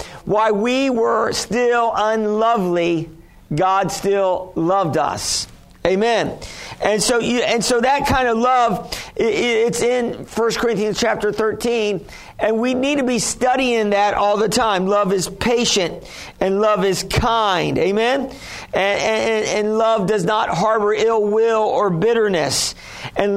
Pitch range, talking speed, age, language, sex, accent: 180-220 Hz, 140 wpm, 50-69, English, male, American